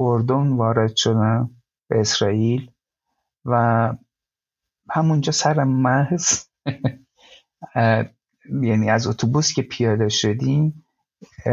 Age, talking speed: 50-69, 85 wpm